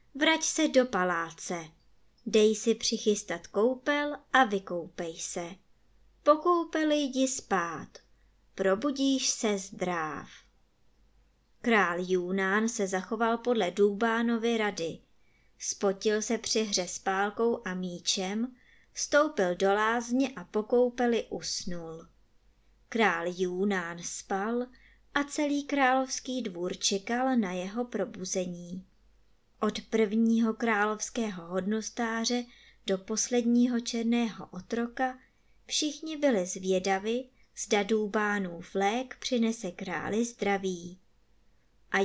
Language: Czech